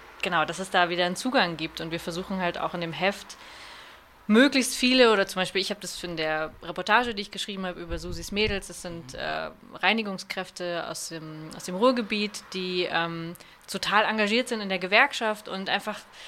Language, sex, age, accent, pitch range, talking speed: German, female, 20-39, German, 180-215 Hz, 195 wpm